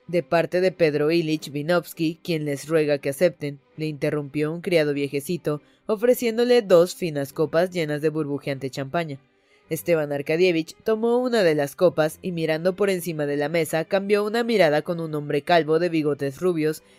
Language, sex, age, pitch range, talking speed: Spanish, female, 20-39, 150-190 Hz, 170 wpm